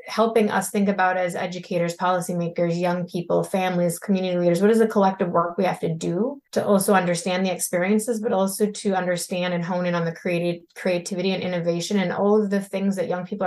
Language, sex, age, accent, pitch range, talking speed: English, female, 20-39, American, 175-200 Hz, 210 wpm